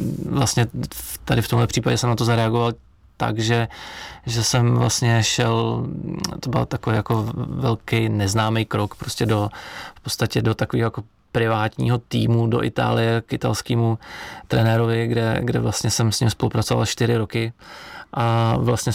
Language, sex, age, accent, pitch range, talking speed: Czech, male, 20-39, native, 110-120 Hz, 150 wpm